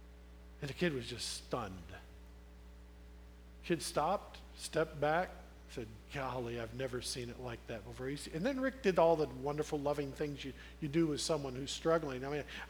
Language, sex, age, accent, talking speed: English, male, 50-69, American, 185 wpm